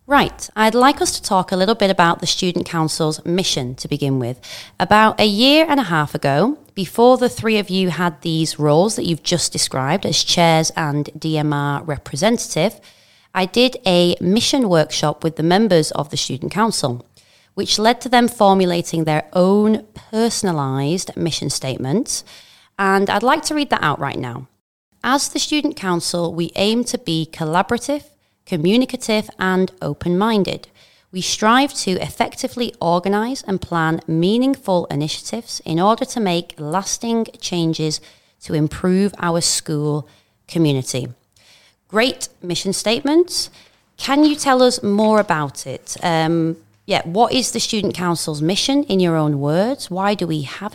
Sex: female